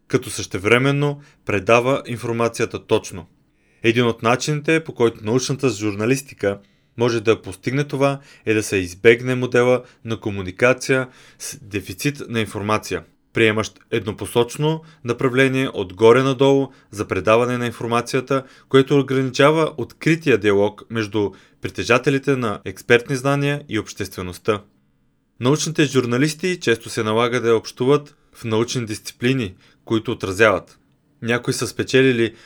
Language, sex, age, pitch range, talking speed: Bulgarian, male, 30-49, 110-135 Hz, 115 wpm